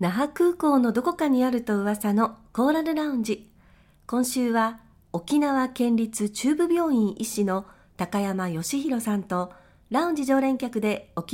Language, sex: Japanese, female